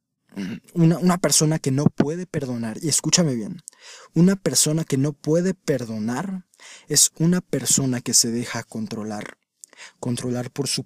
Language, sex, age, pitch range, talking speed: Spanish, male, 20-39, 135-180 Hz, 145 wpm